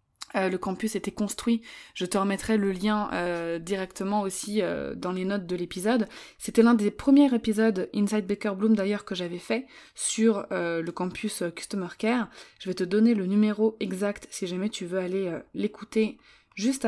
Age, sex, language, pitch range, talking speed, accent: 20-39, female, French, 190-230 Hz, 185 wpm, French